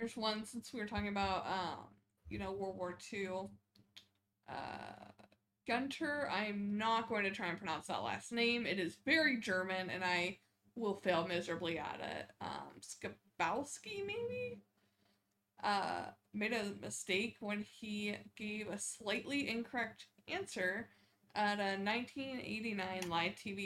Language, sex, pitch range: English, female, 180-215 Hz